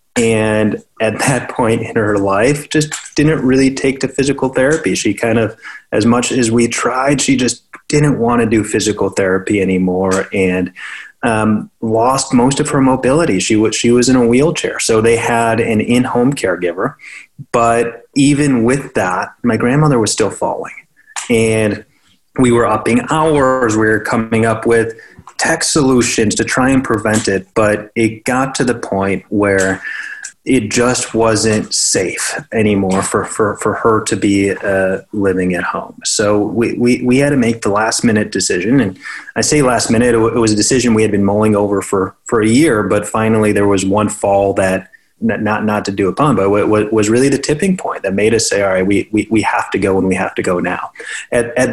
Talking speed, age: 195 wpm, 30-49